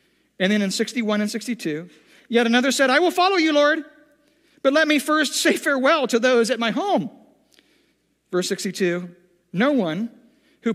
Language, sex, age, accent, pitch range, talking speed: English, male, 50-69, American, 210-285 Hz, 165 wpm